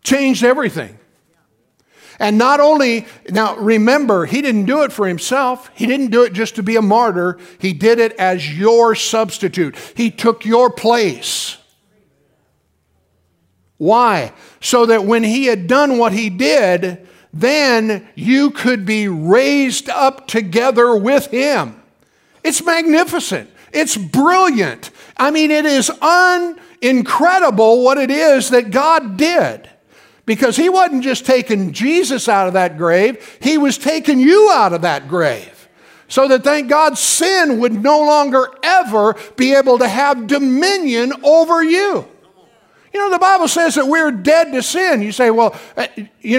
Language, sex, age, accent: English, male, 50-69, American